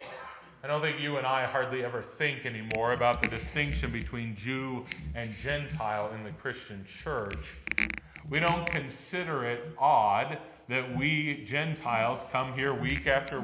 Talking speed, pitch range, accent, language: 145 wpm, 120-160 Hz, American, English